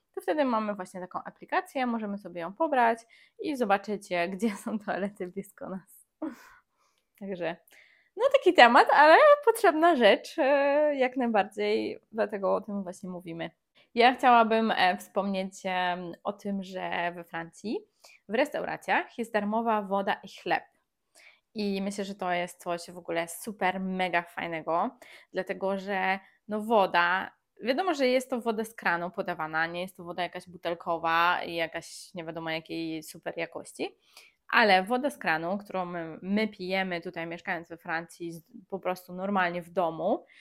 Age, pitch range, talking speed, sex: 20-39, 175-230 Hz, 145 wpm, female